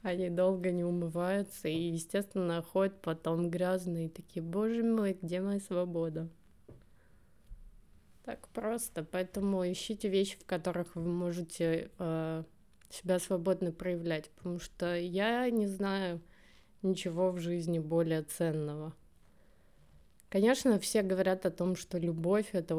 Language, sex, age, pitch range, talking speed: Russian, female, 20-39, 160-190 Hz, 125 wpm